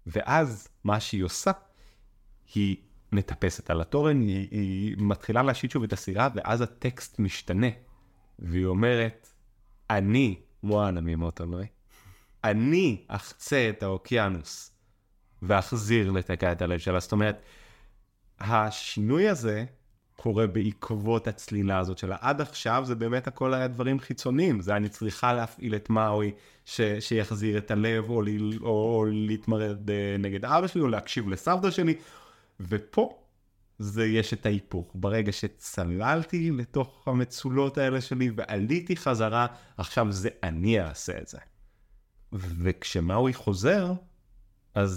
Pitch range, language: 100-125 Hz, Hebrew